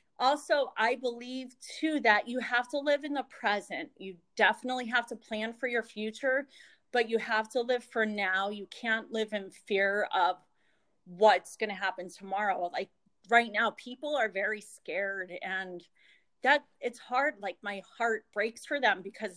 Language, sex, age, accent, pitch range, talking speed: English, female, 30-49, American, 200-255 Hz, 175 wpm